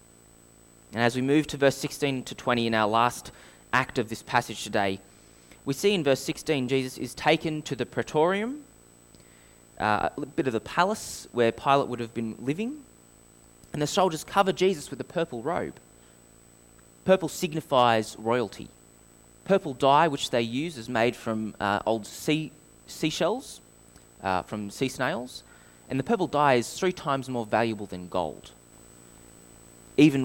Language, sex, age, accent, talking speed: English, male, 20-39, Australian, 160 wpm